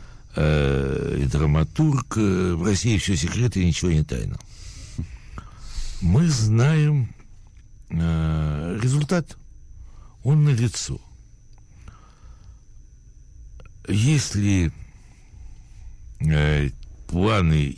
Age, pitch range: 60-79, 75-110 Hz